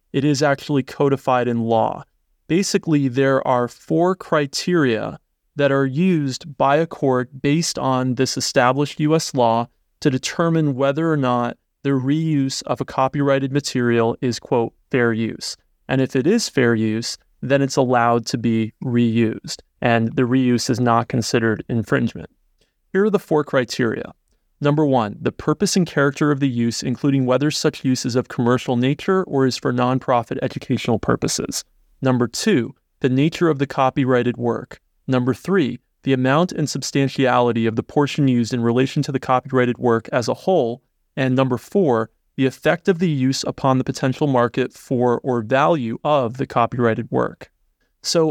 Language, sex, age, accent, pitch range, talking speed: English, male, 30-49, American, 125-145 Hz, 165 wpm